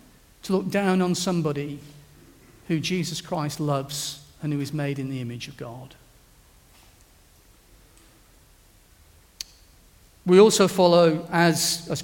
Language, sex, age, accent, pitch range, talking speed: English, male, 40-59, British, 130-170 Hz, 115 wpm